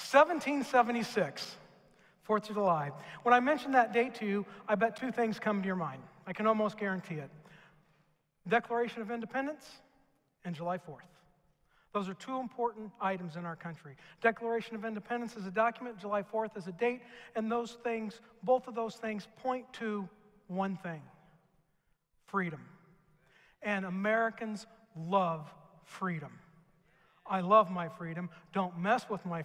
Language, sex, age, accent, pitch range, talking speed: English, male, 50-69, American, 170-230 Hz, 150 wpm